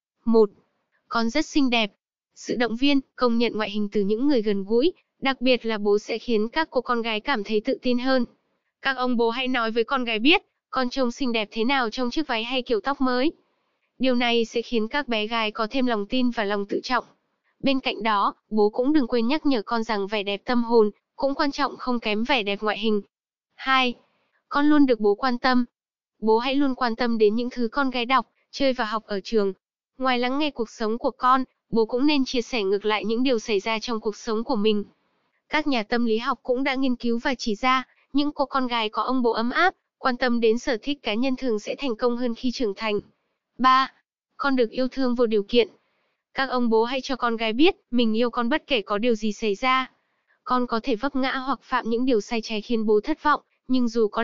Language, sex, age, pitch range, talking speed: Vietnamese, female, 10-29, 225-265 Hz, 240 wpm